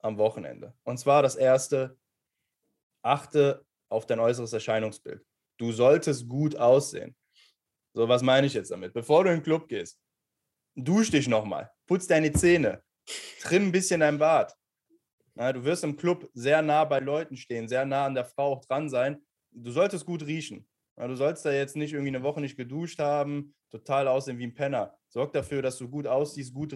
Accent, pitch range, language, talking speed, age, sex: German, 130-180 Hz, German, 190 wpm, 20-39, male